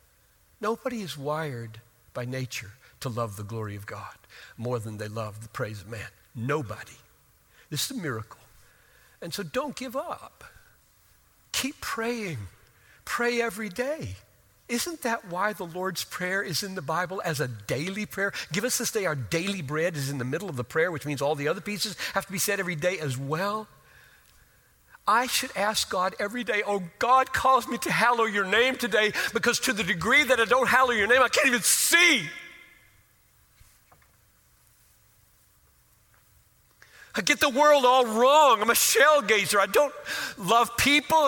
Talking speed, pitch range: 175 wpm, 150-250 Hz